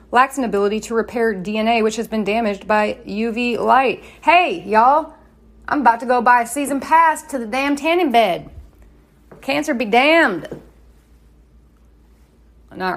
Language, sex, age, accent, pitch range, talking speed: English, female, 30-49, American, 195-265 Hz, 150 wpm